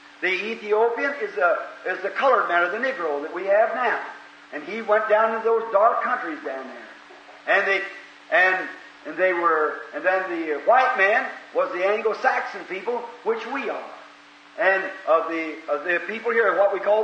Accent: American